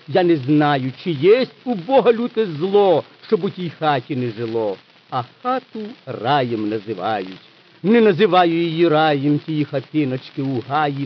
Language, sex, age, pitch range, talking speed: Ukrainian, male, 50-69, 145-210 Hz, 145 wpm